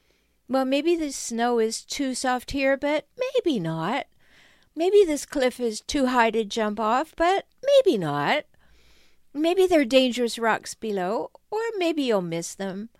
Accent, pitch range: American, 200-260 Hz